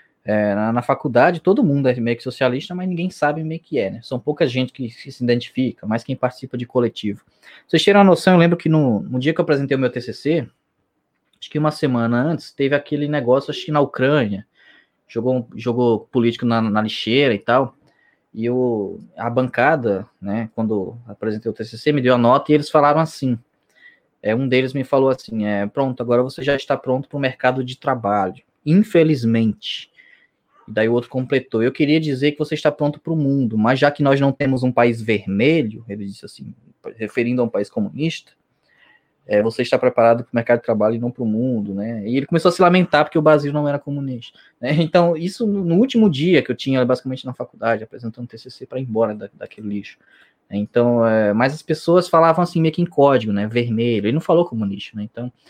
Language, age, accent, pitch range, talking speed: Portuguese, 20-39, Brazilian, 115-150 Hz, 215 wpm